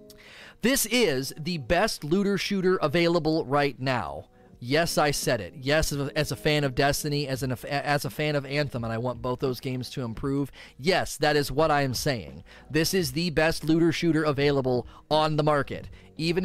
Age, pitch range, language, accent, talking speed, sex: 30-49, 130-160 Hz, English, American, 195 wpm, male